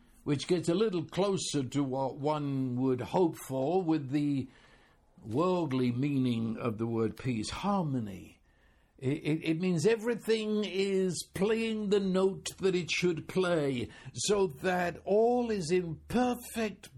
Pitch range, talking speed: 145-200 Hz, 140 wpm